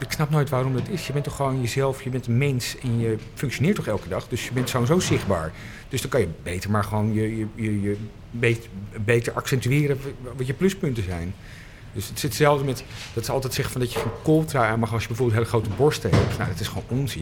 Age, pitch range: 50-69, 105-130 Hz